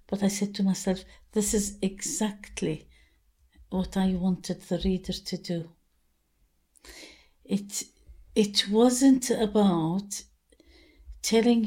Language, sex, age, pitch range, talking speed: English, female, 60-79, 180-215 Hz, 105 wpm